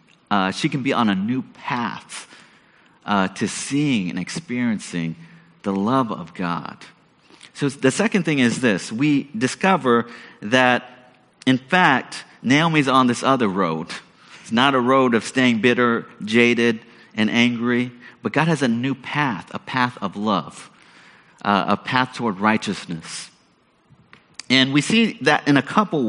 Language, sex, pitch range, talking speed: English, male, 115-150 Hz, 150 wpm